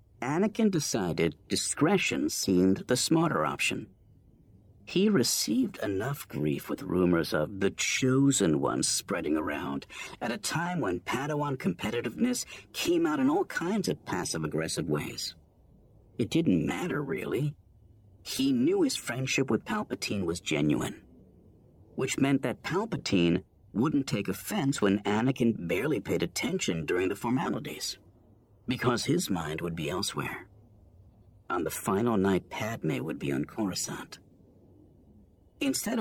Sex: male